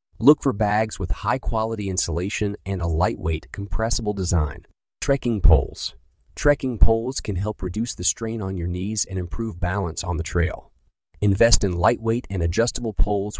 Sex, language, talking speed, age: male, English, 155 wpm, 40-59